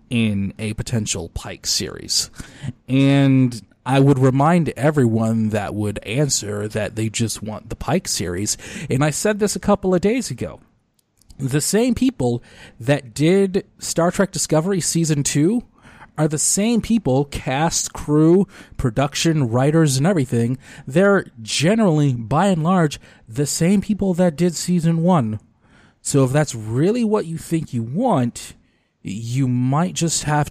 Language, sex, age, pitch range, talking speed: English, male, 30-49, 110-155 Hz, 145 wpm